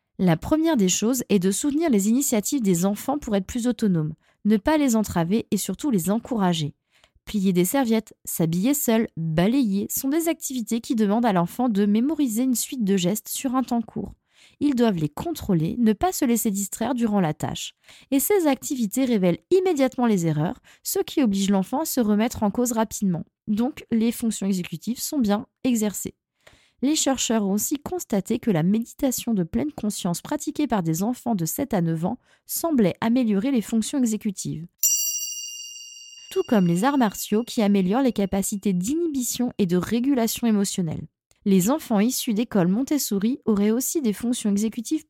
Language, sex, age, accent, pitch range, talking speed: French, female, 20-39, French, 200-265 Hz, 175 wpm